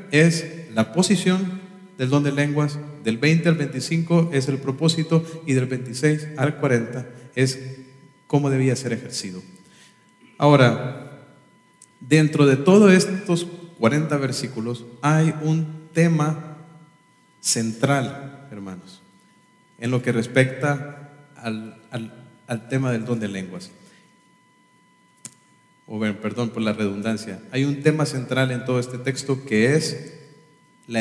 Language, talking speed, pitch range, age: English, 125 wpm, 115-150 Hz, 40-59